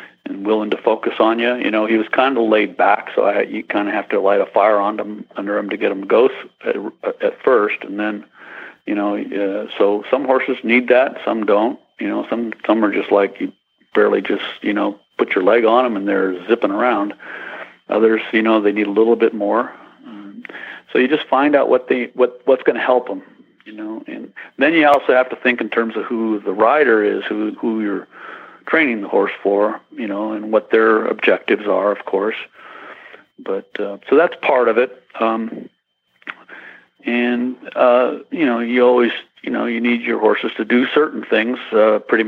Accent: American